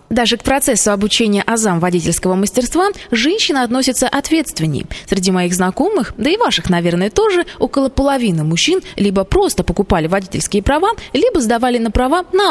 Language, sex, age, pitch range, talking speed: Russian, female, 20-39, 185-265 Hz, 150 wpm